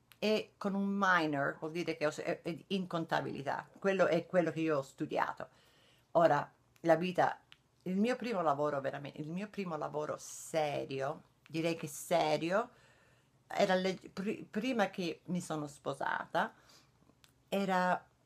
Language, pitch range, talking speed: Italian, 145-180 Hz, 145 wpm